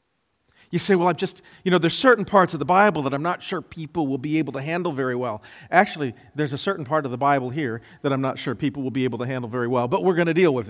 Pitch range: 125-195 Hz